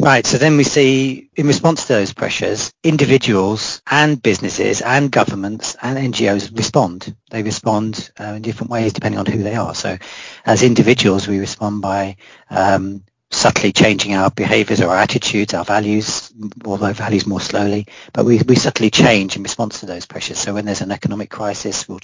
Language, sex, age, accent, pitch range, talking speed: English, male, 40-59, British, 100-120 Hz, 180 wpm